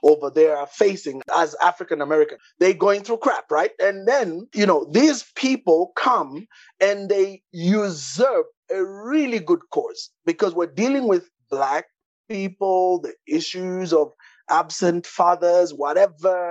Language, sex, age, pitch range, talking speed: English, male, 30-49, 165-265 Hz, 135 wpm